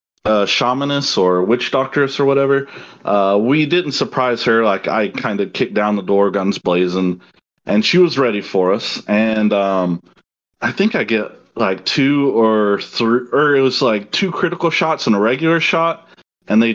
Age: 30-49